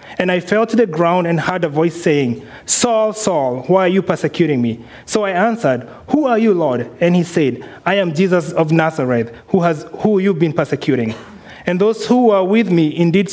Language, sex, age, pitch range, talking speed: English, male, 30-49, 160-200 Hz, 205 wpm